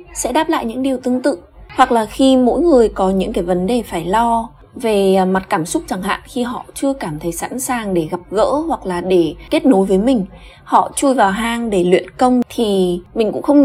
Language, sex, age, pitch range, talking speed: Vietnamese, female, 20-39, 185-260 Hz, 235 wpm